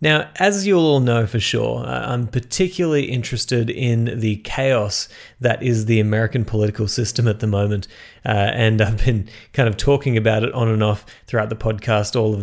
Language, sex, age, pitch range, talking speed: English, male, 30-49, 110-135 Hz, 195 wpm